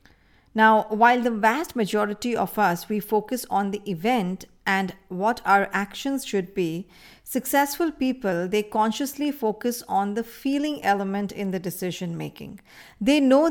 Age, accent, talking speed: 50-69, Indian, 145 wpm